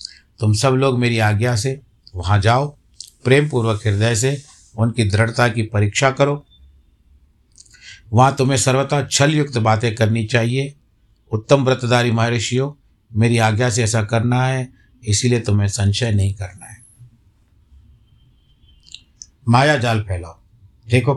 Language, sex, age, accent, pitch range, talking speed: Hindi, male, 60-79, native, 105-125 Hz, 125 wpm